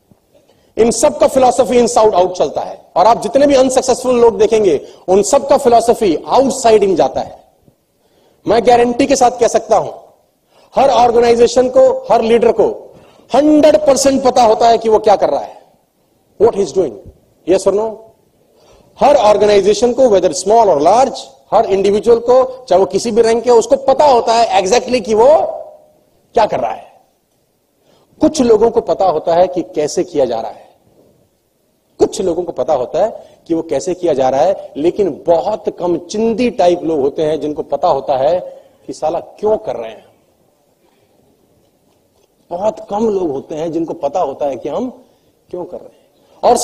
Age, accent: 40-59, native